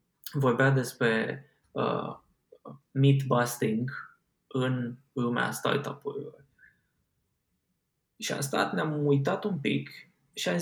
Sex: male